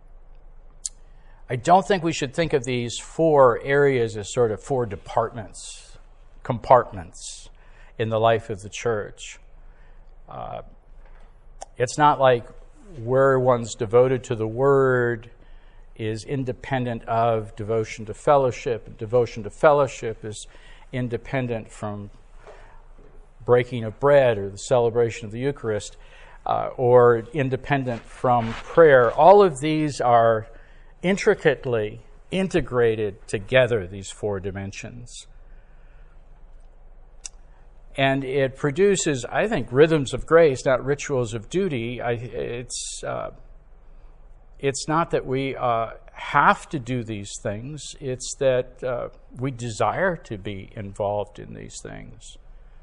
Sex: male